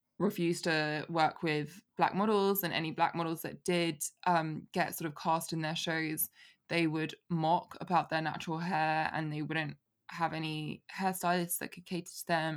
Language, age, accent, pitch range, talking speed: English, 20-39, British, 150-175 Hz, 180 wpm